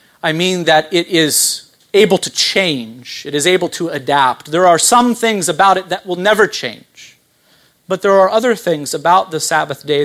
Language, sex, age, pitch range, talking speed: English, male, 40-59, 150-205 Hz, 190 wpm